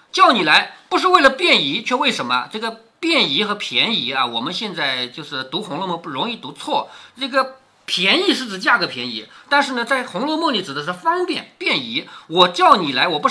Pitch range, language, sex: 215-325 Hz, Chinese, male